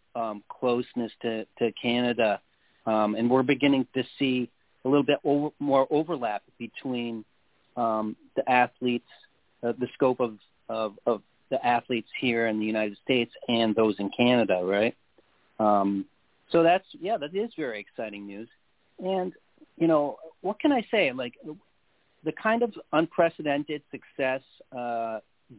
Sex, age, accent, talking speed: male, 40-59, American, 140 wpm